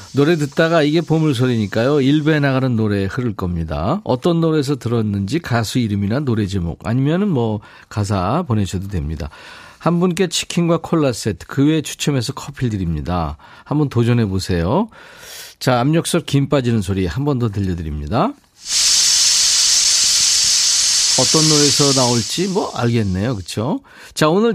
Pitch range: 105-160 Hz